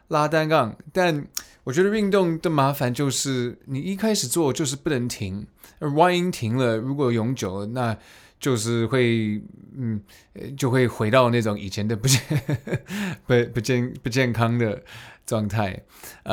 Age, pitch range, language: 20-39, 110-150 Hz, Chinese